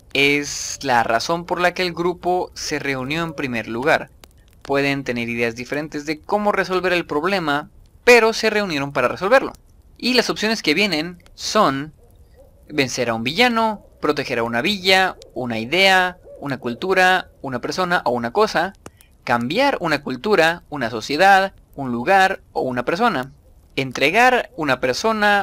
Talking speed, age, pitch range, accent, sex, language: 150 wpm, 20-39, 135-195 Hz, Mexican, male, Spanish